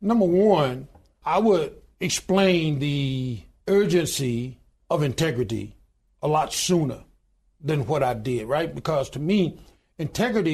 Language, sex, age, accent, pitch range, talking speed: English, male, 60-79, American, 140-185 Hz, 120 wpm